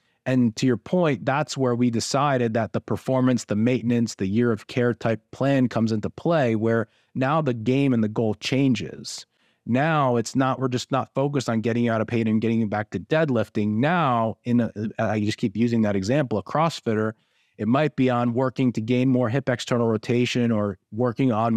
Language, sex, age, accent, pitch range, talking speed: English, male, 30-49, American, 110-130 Hz, 200 wpm